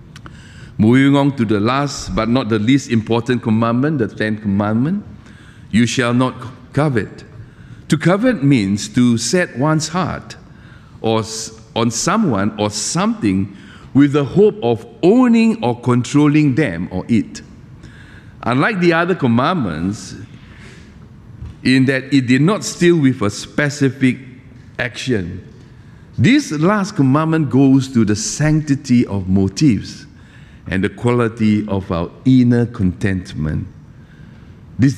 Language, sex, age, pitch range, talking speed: English, male, 50-69, 115-150 Hz, 120 wpm